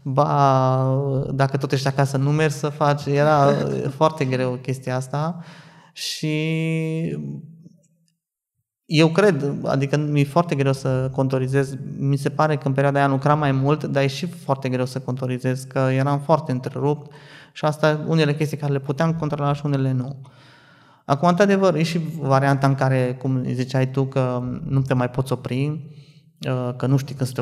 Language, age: Romanian, 20-39